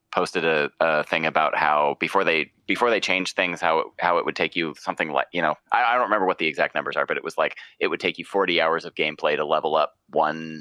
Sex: male